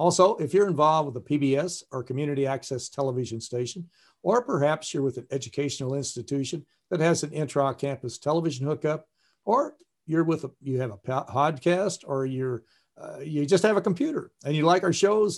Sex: male